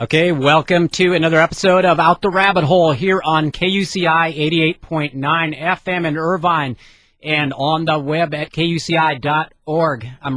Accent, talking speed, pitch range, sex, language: American, 140 wpm, 150-180 Hz, male, English